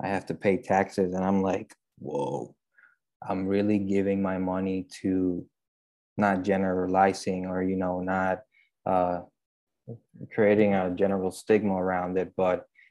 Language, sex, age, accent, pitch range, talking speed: English, male, 20-39, American, 95-100 Hz, 135 wpm